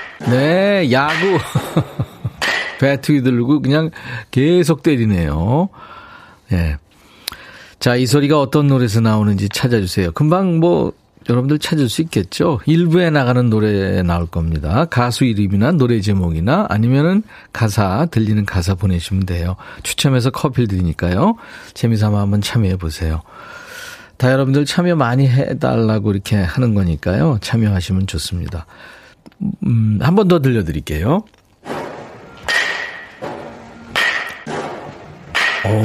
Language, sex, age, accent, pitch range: Korean, male, 40-59, native, 100-145 Hz